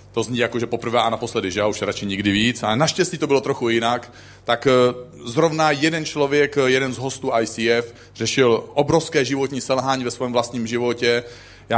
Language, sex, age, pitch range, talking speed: Czech, male, 40-59, 115-140 Hz, 180 wpm